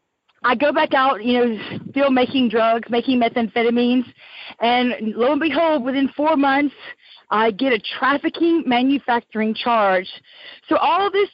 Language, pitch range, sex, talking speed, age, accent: English, 230-280 Hz, female, 145 wpm, 40-59, American